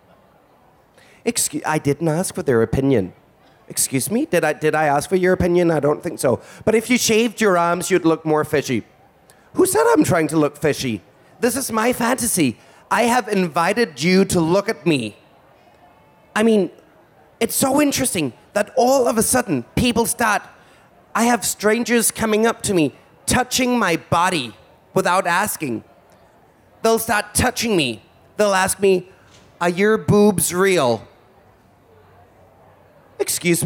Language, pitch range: Danish, 155-220 Hz